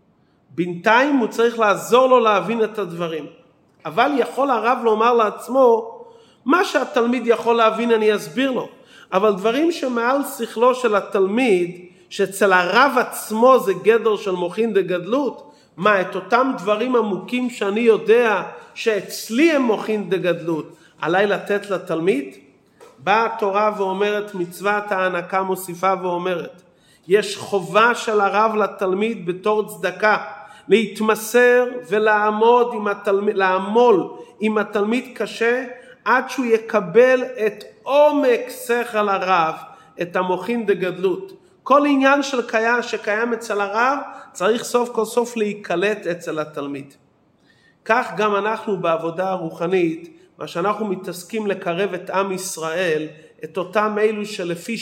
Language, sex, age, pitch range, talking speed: Hebrew, male, 40-59, 185-235 Hz, 115 wpm